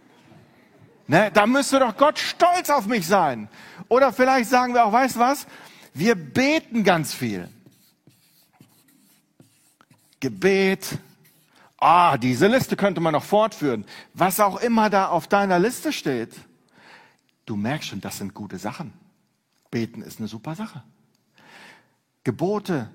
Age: 40-59